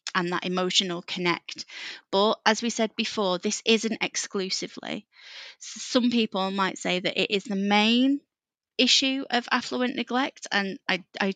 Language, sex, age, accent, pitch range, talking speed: English, female, 20-39, British, 185-220 Hz, 150 wpm